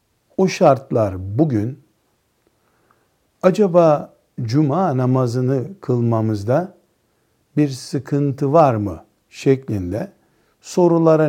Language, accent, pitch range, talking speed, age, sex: Turkish, native, 110-165 Hz, 70 wpm, 60-79, male